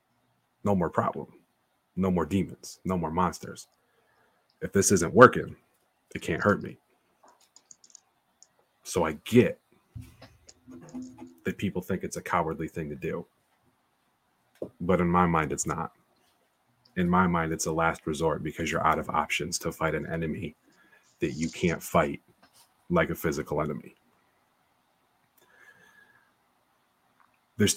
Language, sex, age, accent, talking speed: English, male, 30-49, American, 130 wpm